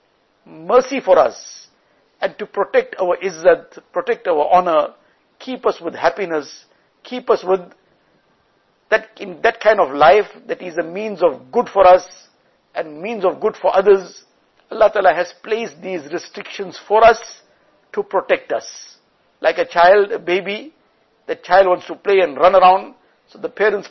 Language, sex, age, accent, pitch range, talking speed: English, male, 60-79, Indian, 175-215 Hz, 165 wpm